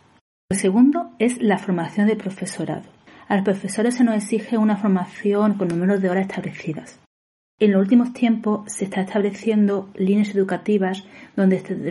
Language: Spanish